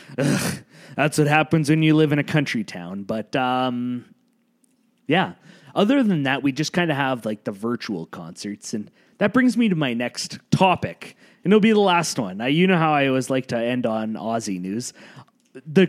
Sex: male